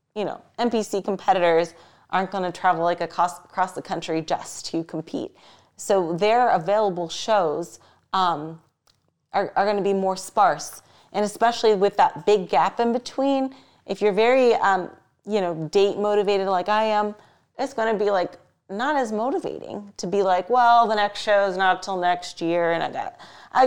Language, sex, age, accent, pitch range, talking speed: English, female, 30-49, American, 180-215 Hz, 180 wpm